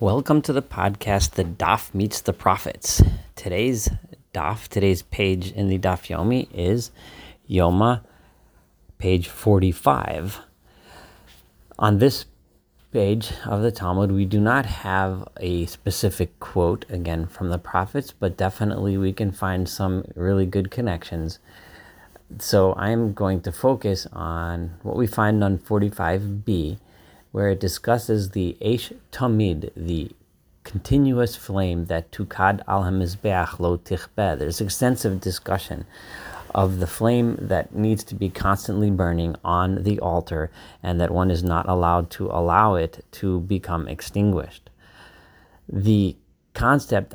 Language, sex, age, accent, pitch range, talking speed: English, male, 40-59, American, 85-105 Hz, 130 wpm